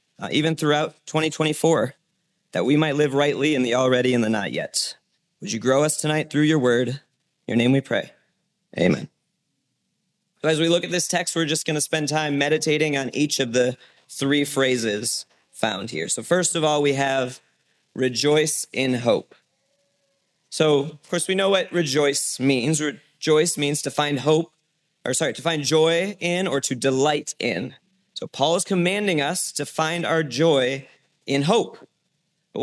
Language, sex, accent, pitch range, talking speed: English, male, American, 140-175 Hz, 175 wpm